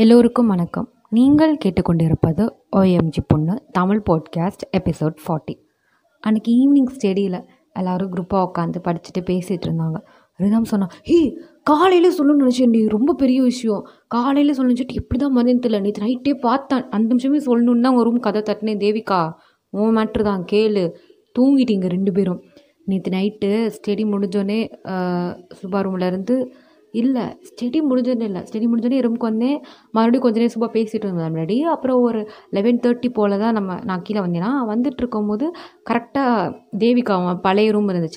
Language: Tamil